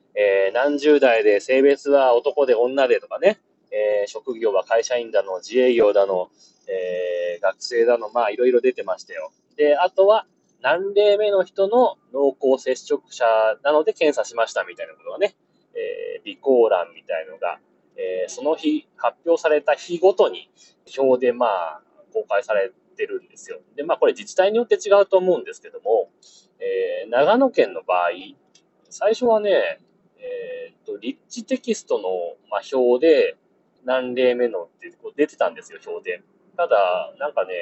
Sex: male